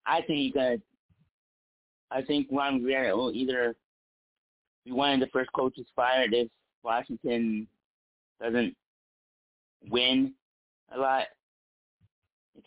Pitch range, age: 110-130 Hz, 30-49